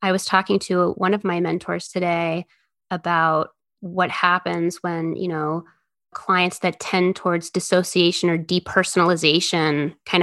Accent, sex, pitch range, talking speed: American, female, 170-195 Hz, 135 wpm